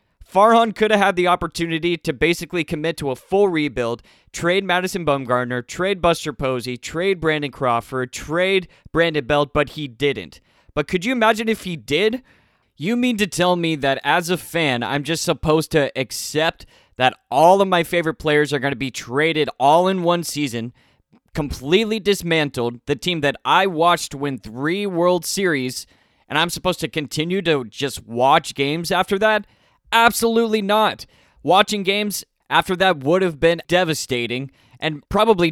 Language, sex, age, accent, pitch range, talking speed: English, male, 20-39, American, 140-180 Hz, 165 wpm